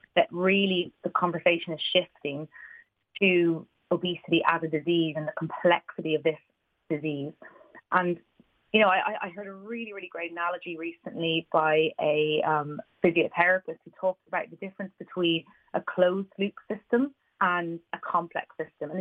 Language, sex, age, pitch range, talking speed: English, female, 30-49, 160-200 Hz, 150 wpm